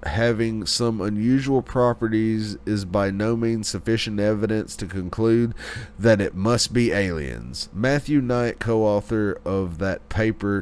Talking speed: 130 wpm